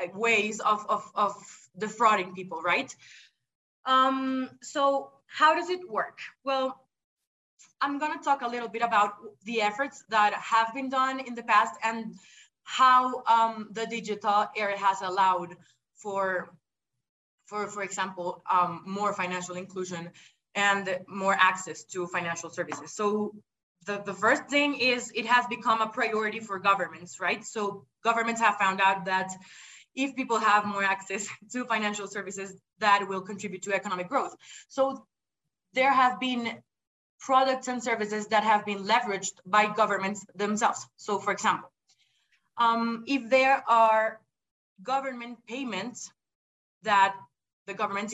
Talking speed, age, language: 140 wpm, 20-39, English